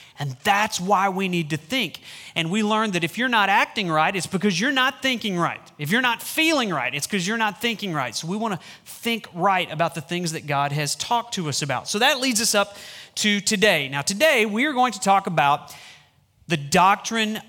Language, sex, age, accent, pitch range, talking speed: English, male, 30-49, American, 150-215 Hz, 225 wpm